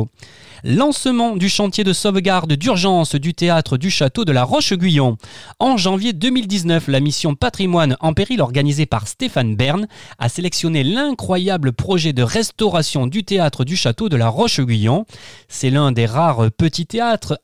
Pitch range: 130-195 Hz